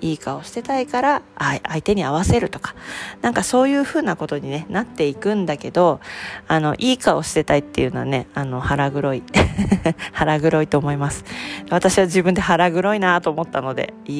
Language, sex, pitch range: Japanese, female, 145-215 Hz